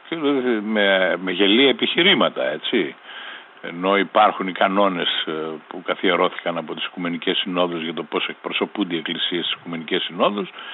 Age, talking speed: 60-79, 135 wpm